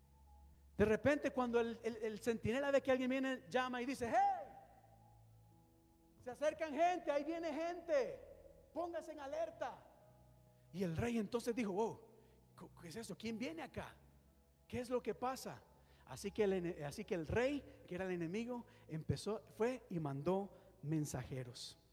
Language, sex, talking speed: Spanish, male, 155 wpm